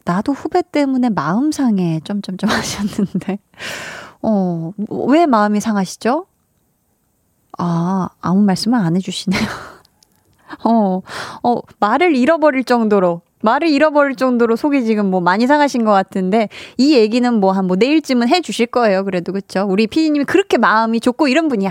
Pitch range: 195-270 Hz